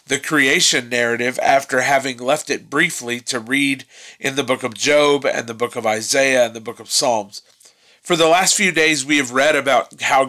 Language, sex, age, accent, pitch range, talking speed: English, male, 40-59, American, 130-165 Hz, 205 wpm